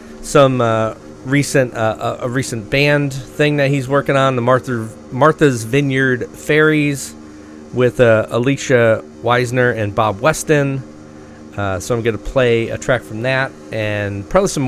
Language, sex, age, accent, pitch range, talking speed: English, male, 40-59, American, 100-135 Hz, 150 wpm